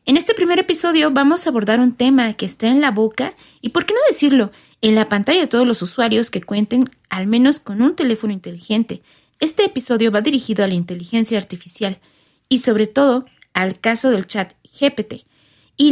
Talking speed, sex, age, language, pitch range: 190 wpm, female, 20-39, Spanish, 205-280 Hz